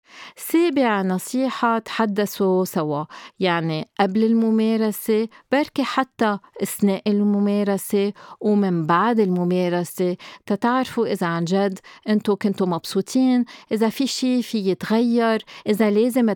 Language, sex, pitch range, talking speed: Arabic, female, 185-220 Hz, 105 wpm